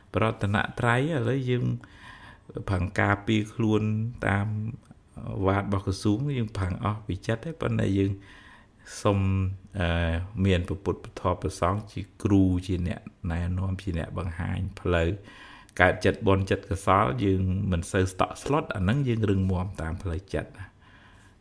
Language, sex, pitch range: English, male, 85-105 Hz